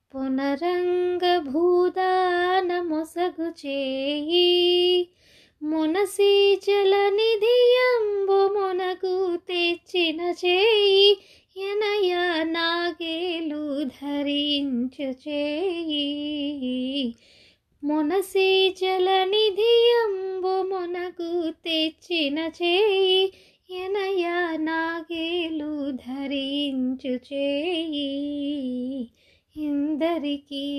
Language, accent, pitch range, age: English, Indian, 275-355 Hz, 20-39